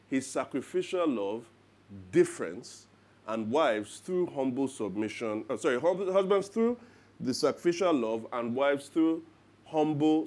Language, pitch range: English, 105-145 Hz